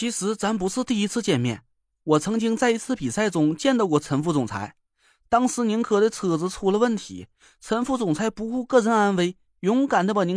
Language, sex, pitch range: Chinese, male, 135-220 Hz